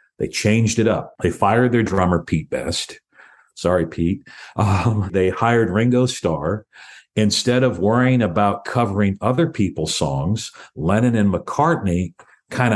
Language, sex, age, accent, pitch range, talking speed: English, male, 50-69, American, 90-115 Hz, 135 wpm